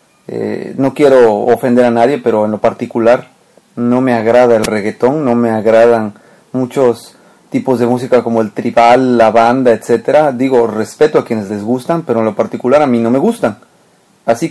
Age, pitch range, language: 30-49, 120-165 Hz, Spanish